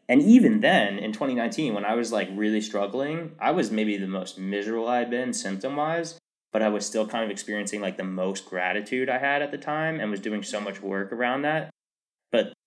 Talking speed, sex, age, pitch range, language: 215 wpm, male, 20-39, 100-120 Hz, English